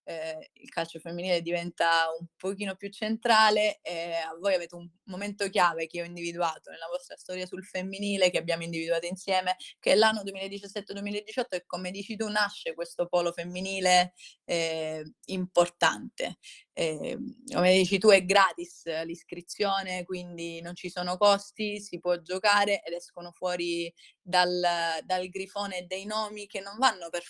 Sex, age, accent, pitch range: female, 20-39, native, 170-200 Hz